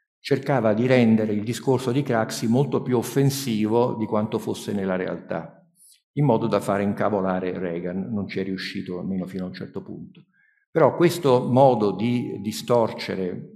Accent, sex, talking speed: native, male, 160 wpm